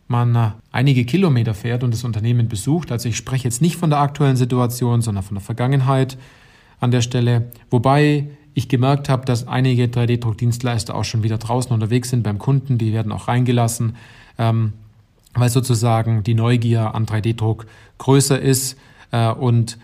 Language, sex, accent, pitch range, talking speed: German, male, German, 115-140 Hz, 165 wpm